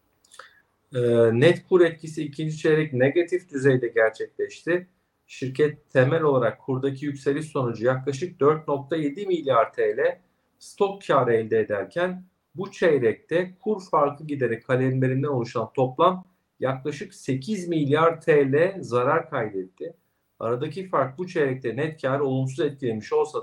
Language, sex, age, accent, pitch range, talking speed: Turkish, male, 50-69, native, 130-170 Hz, 115 wpm